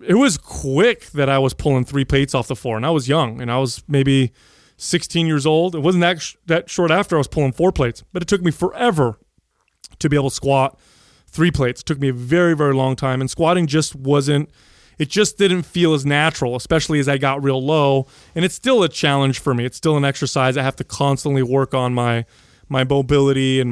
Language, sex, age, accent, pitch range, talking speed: English, male, 30-49, American, 130-155 Hz, 235 wpm